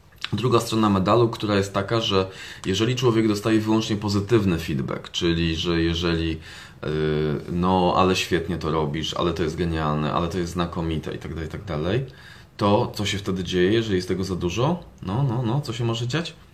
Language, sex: Polish, male